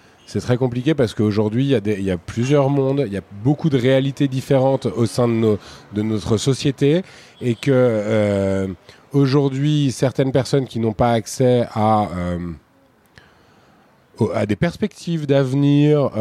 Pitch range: 110-140 Hz